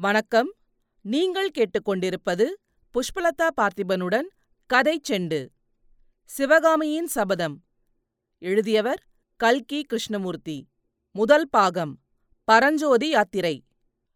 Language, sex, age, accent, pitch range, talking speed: Tamil, female, 40-59, native, 180-255 Hz, 70 wpm